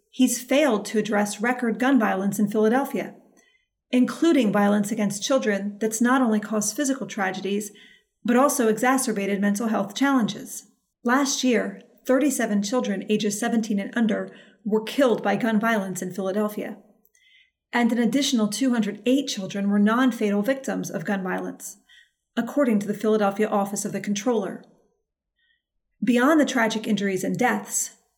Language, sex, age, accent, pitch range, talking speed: English, female, 40-59, American, 205-245 Hz, 140 wpm